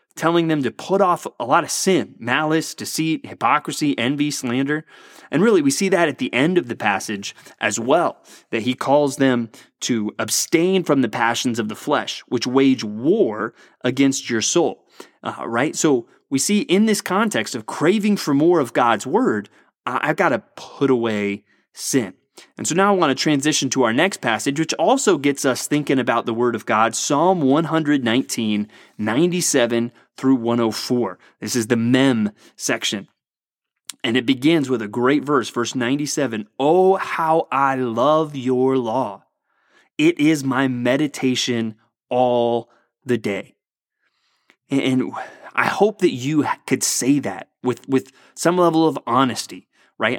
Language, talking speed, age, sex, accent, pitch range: English, 160 wpm, 30-49, male, American, 120-160 Hz